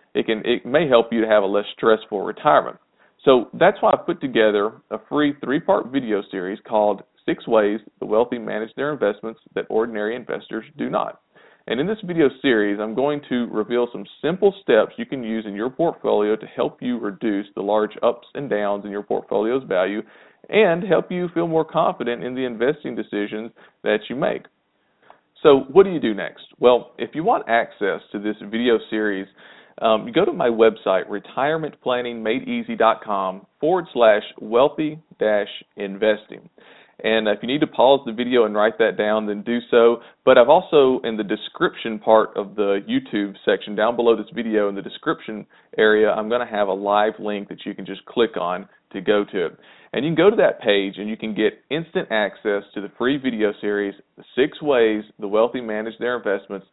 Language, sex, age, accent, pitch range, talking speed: English, male, 40-59, American, 105-125 Hz, 190 wpm